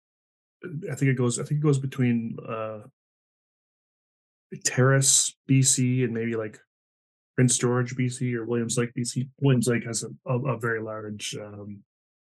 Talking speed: 150 wpm